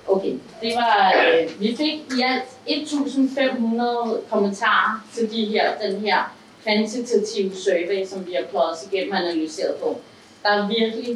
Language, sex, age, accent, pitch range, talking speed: Danish, female, 30-49, native, 190-245 Hz, 140 wpm